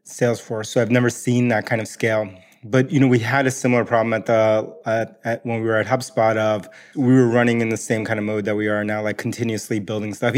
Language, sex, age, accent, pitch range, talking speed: English, male, 20-39, American, 110-120 Hz, 255 wpm